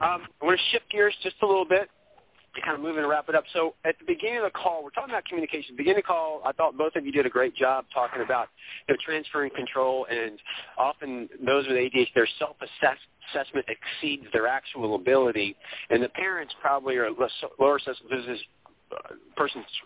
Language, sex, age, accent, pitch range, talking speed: English, male, 40-59, American, 130-190 Hz, 215 wpm